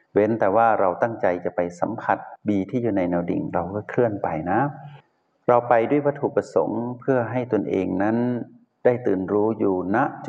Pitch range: 100-125 Hz